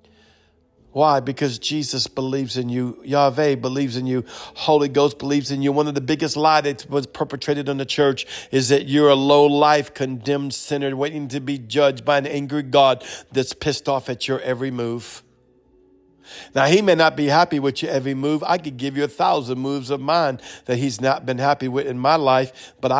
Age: 50-69